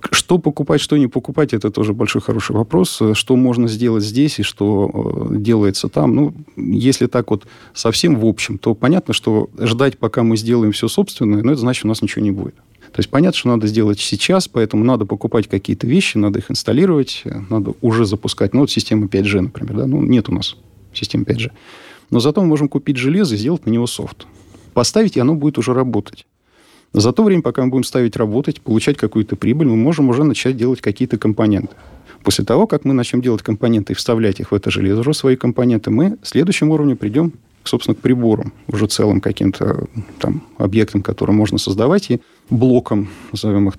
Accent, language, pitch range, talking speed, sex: native, Russian, 105-135 Hz, 195 wpm, male